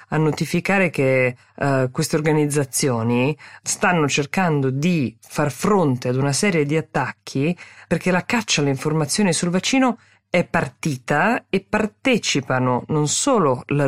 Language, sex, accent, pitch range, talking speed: Italian, female, native, 135-175 Hz, 130 wpm